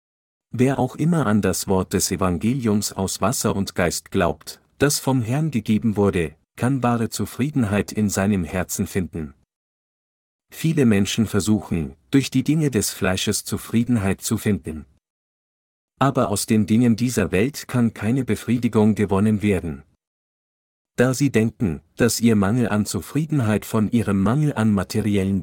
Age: 50-69